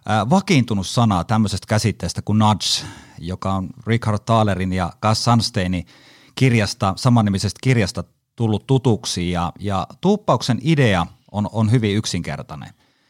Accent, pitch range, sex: native, 100-130 Hz, male